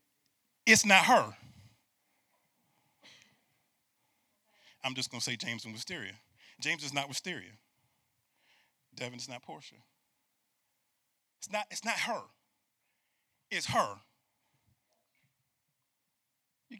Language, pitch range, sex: English, 175-255 Hz, male